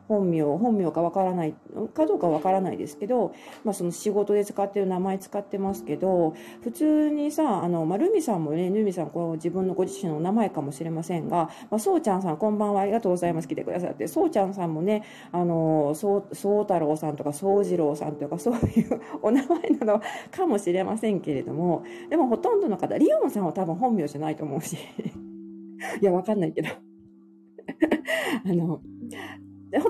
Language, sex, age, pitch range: Japanese, female, 40-59, 155-215 Hz